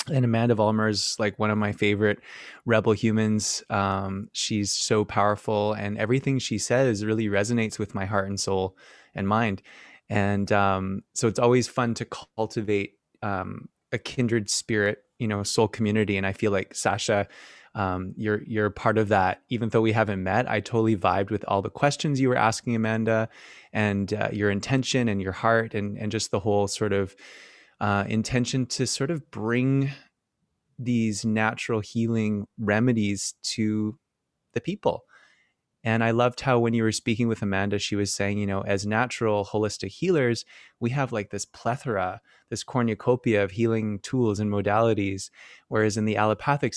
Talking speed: 170 wpm